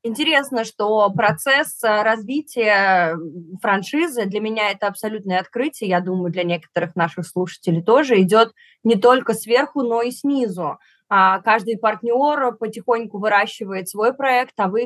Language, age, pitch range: Russian, 20-39, 185-245 Hz